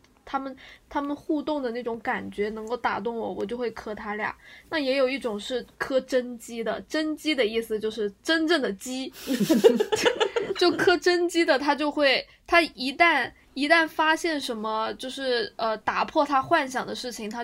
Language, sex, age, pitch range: Chinese, female, 20-39, 225-285 Hz